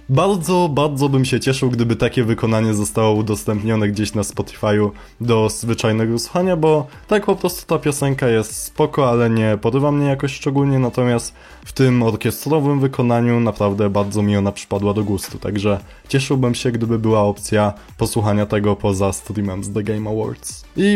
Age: 20-39